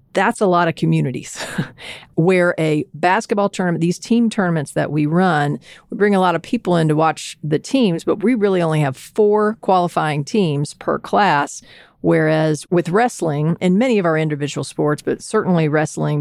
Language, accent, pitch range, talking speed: English, American, 155-190 Hz, 180 wpm